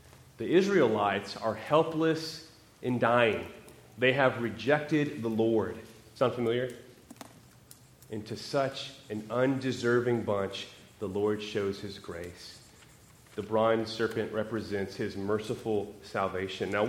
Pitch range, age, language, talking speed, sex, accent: 110-165 Hz, 30-49, English, 115 wpm, male, American